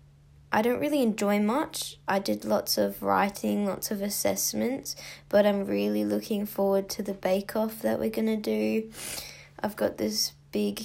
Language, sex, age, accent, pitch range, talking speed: English, female, 10-29, Australian, 145-210 Hz, 170 wpm